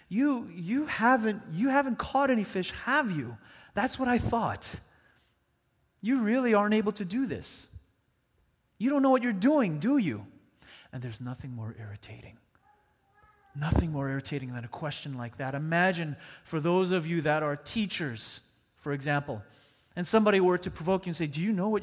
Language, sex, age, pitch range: English, male, 30-49, 160-225 Hz